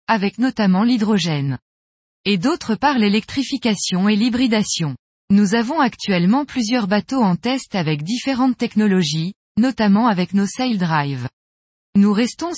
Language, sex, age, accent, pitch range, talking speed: French, female, 20-39, French, 185-250 Hz, 125 wpm